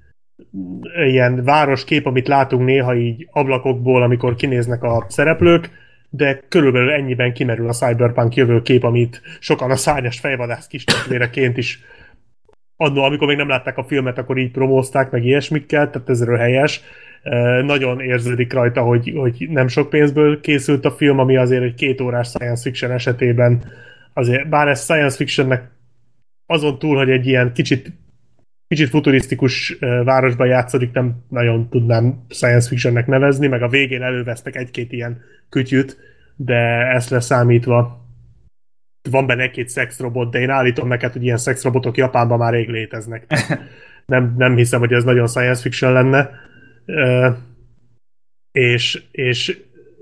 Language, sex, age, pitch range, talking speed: Hungarian, male, 30-49, 120-135 Hz, 140 wpm